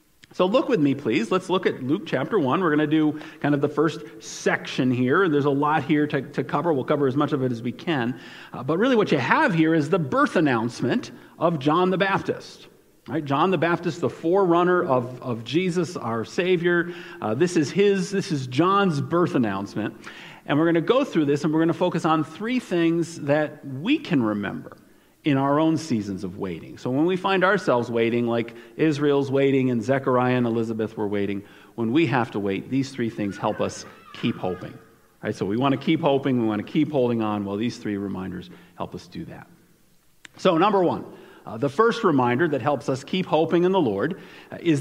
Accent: American